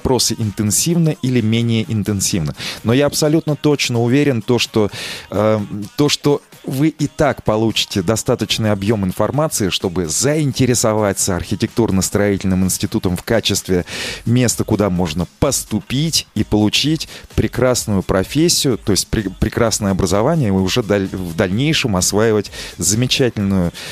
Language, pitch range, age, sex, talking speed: Russian, 100-135 Hz, 30-49, male, 110 wpm